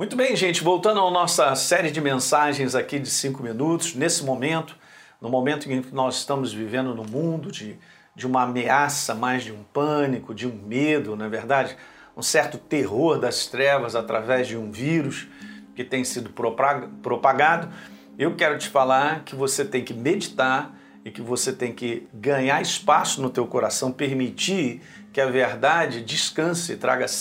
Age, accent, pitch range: 50-69, Brazilian, 125-155 Hz